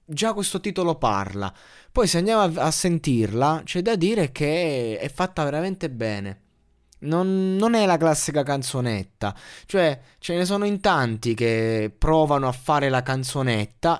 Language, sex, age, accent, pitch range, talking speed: Italian, male, 20-39, native, 115-170 Hz, 155 wpm